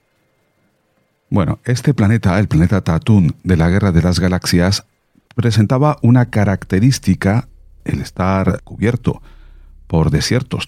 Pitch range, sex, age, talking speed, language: 75-105 Hz, male, 40-59, 110 wpm, Spanish